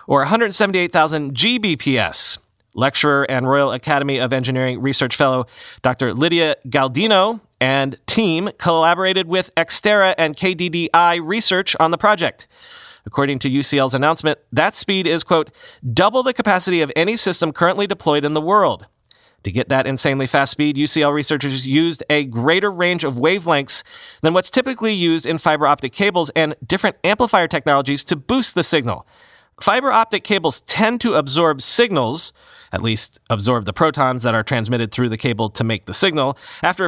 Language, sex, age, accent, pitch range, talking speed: English, male, 30-49, American, 140-190 Hz, 155 wpm